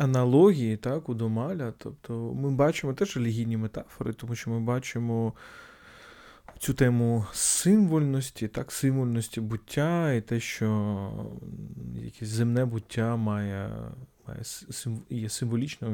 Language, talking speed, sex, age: Ukrainian, 115 wpm, male, 20-39